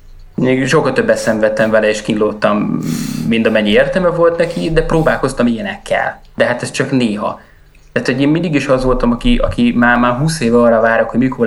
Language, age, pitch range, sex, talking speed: Hungarian, 20-39, 105-135 Hz, male, 185 wpm